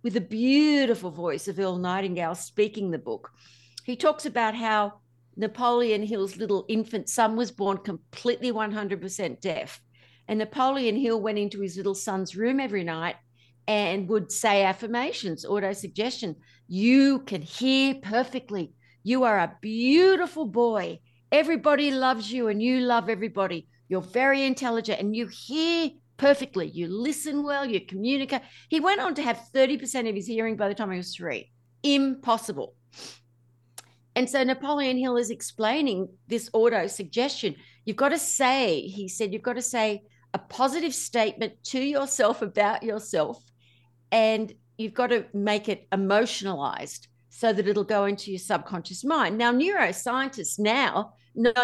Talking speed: 150 wpm